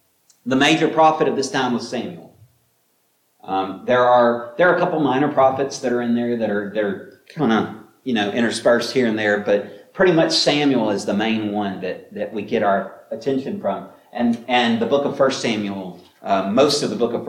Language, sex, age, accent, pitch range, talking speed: English, male, 40-59, American, 115-155 Hz, 210 wpm